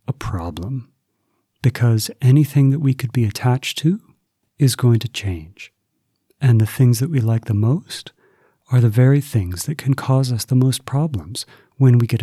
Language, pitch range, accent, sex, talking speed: English, 105-130 Hz, American, male, 170 wpm